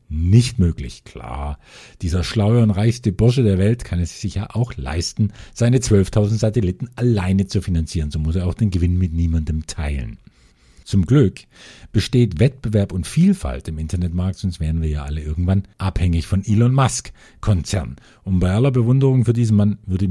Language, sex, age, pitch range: German, male, 50-69, 85-125 Hz